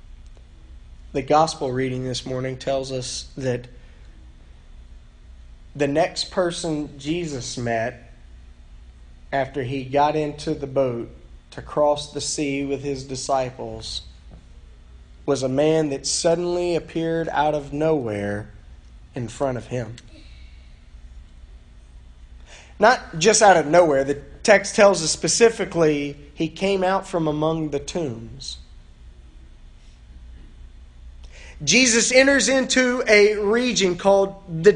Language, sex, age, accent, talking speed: English, male, 30-49, American, 110 wpm